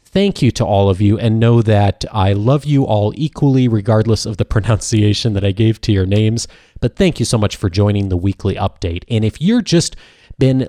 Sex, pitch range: male, 100-130 Hz